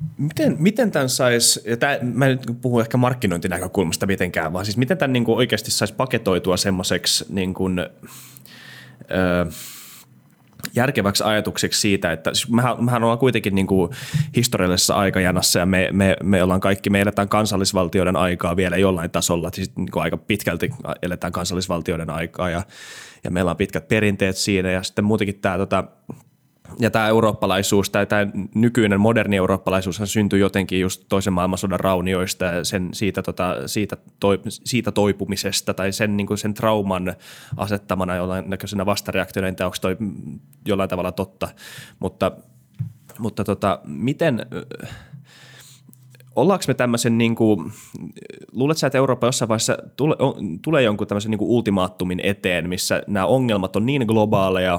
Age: 20-39